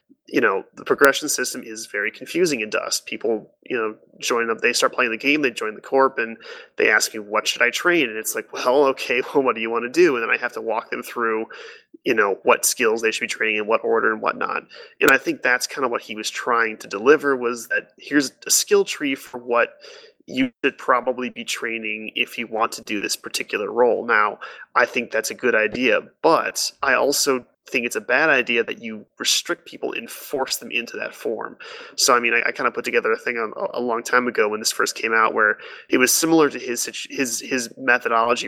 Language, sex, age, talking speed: English, male, 30-49, 235 wpm